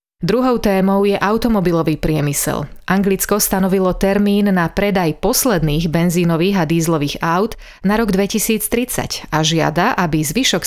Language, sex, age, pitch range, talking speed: Slovak, female, 30-49, 170-205 Hz, 125 wpm